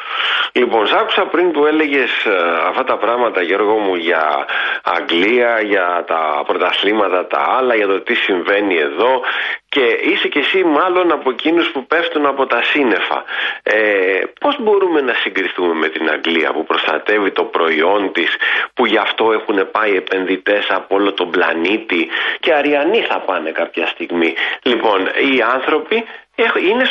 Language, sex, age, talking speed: Greek, male, 40-59, 150 wpm